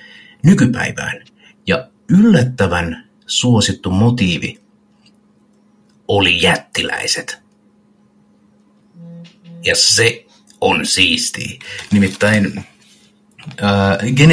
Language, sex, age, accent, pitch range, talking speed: Finnish, male, 50-69, native, 95-125 Hz, 50 wpm